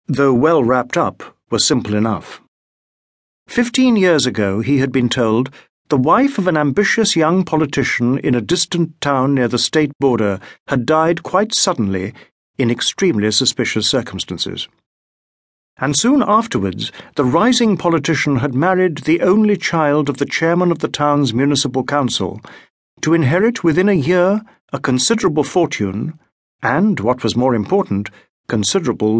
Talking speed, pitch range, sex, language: 145 wpm, 120-170 Hz, male, English